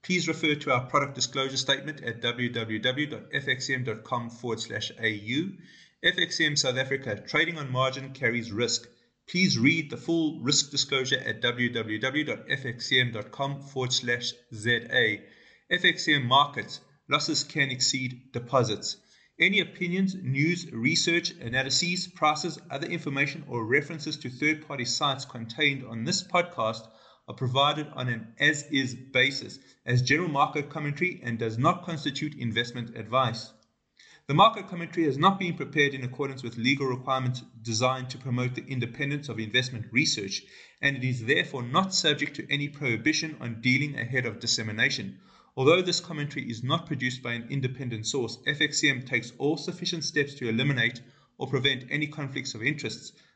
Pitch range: 120-150 Hz